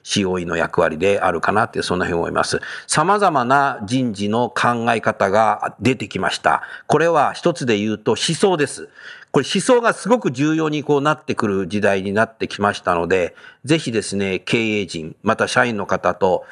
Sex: male